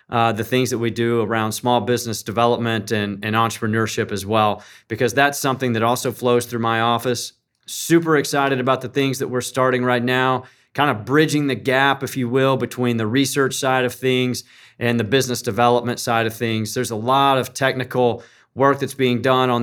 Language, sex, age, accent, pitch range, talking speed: English, male, 30-49, American, 115-135 Hz, 200 wpm